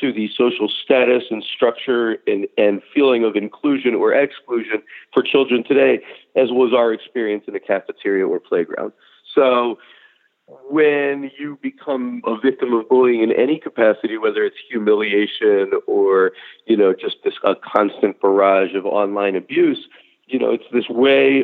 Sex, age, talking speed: male, 40-59, 155 wpm